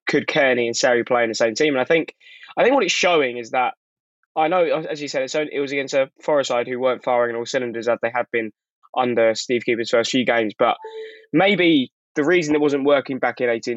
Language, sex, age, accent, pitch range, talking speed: English, male, 10-29, British, 120-155 Hz, 245 wpm